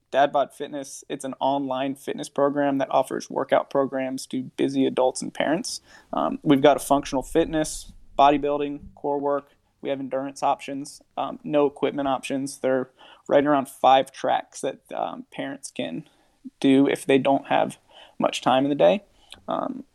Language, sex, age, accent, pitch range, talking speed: English, male, 20-39, American, 140-160 Hz, 160 wpm